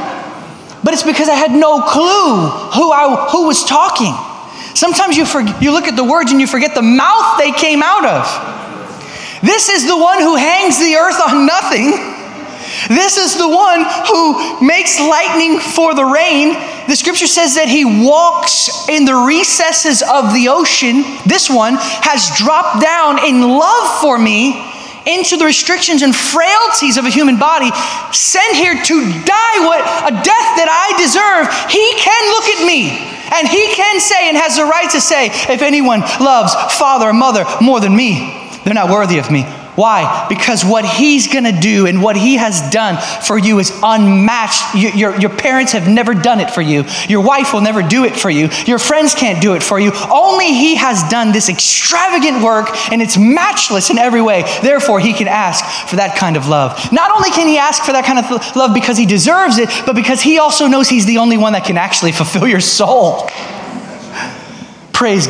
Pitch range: 220-320 Hz